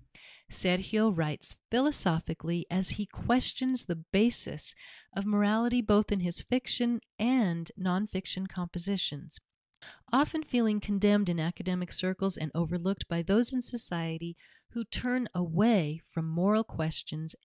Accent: American